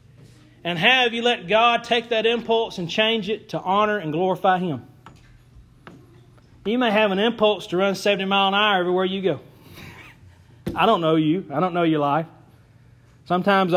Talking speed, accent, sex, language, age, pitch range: 175 wpm, American, male, English, 30-49, 170-215 Hz